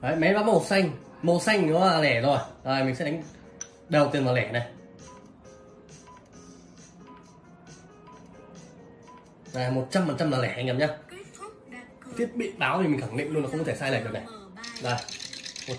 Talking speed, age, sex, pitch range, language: 170 wpm, 20-39, male, 140-180 Hz, Vietnamese